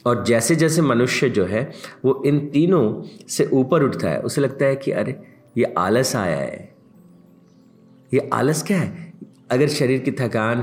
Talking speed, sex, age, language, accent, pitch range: 170 wpm, male, 50-69, Hindi, native, 105-170 Hz